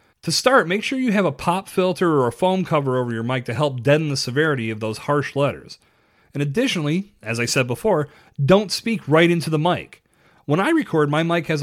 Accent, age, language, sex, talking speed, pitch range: American, 40-59, English, male, 220 wpm, 125-185 Hz